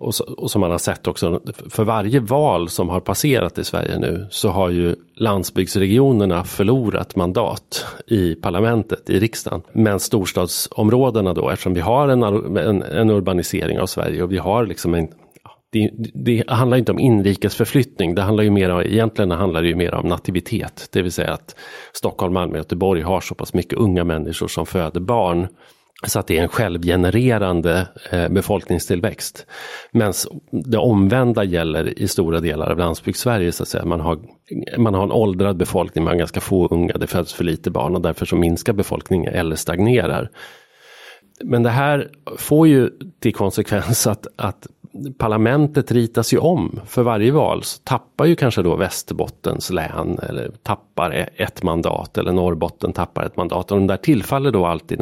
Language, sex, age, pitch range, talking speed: Swedish, male, 40-59, 90-115 Hz, 175 wpm